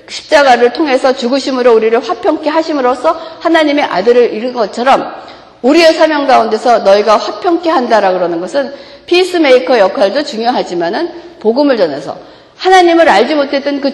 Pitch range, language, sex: 210-310 Hz, Korean, female